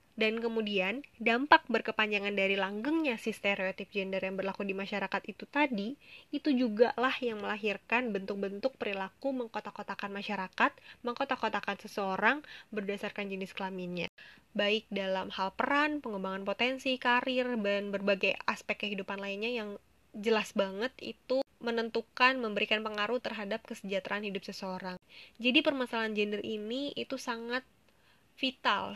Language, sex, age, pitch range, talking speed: Indonesian, female, 10-29, 200-235 Hz, 120 wpm